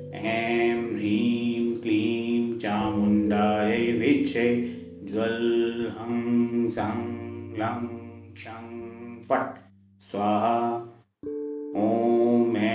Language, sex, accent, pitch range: Hindi, male, native, 110-120 Hz